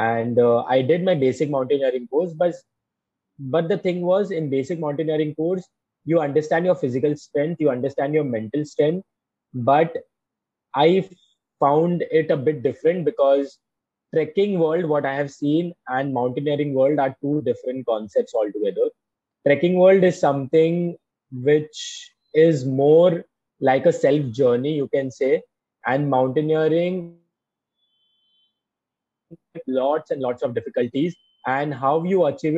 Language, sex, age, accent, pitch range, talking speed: Hindi, male, 20-39, native, 130-165 Hz, 135 wpm